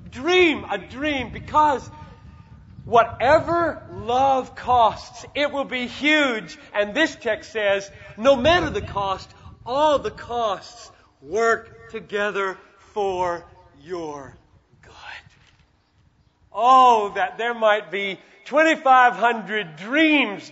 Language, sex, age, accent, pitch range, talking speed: English, male, 40-59, American, 205-285 Hz, 100 wpm